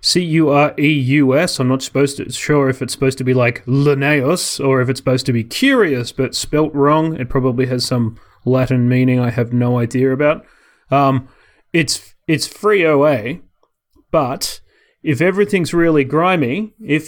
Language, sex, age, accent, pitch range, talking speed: English, male, 30-49, Australian, 125-155 Hz, 180 wpm